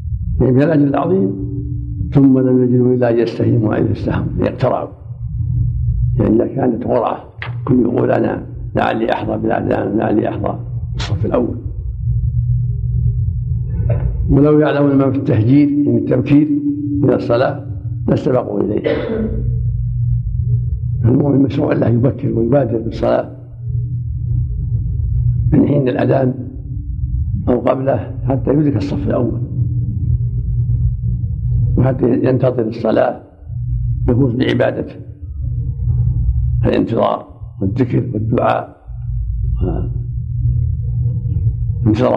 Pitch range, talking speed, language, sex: 115-125 Hz, 90 wpm, Arabic, male